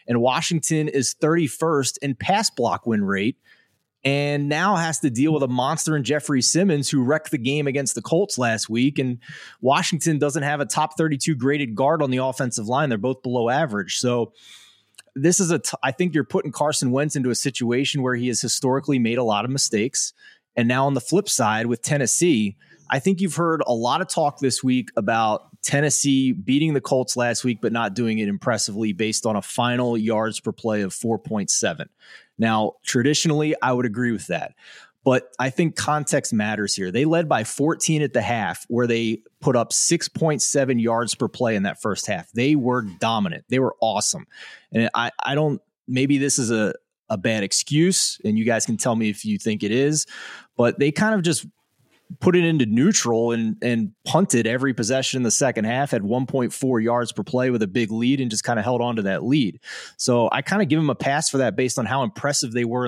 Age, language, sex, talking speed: 30-49, English, male, 210 wpm